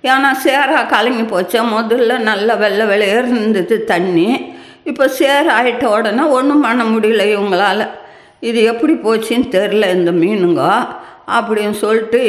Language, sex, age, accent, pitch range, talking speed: English, female, 50-69, Indian, 180-220 Hz, 140 wpm